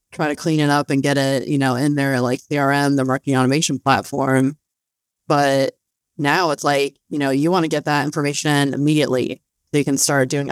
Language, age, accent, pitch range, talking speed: English, 20-39, American, 140-160 Hz, 205 wpm